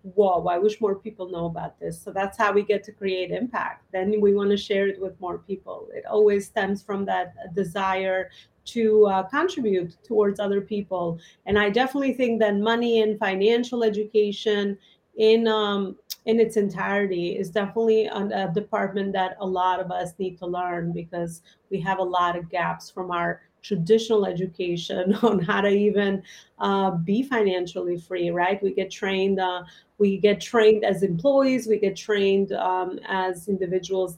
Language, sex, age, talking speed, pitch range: English, female, 30-49, 170 wpm, 185-215 Hz